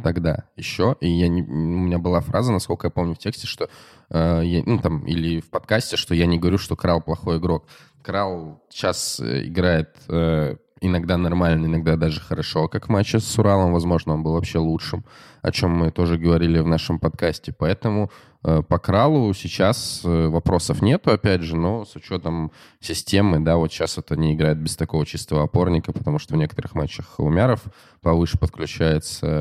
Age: 20-39